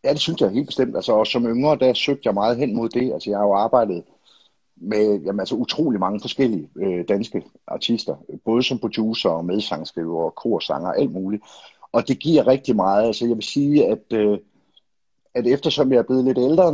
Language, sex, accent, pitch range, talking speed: English, male, Danish, 110-135 Hz, 210 wpm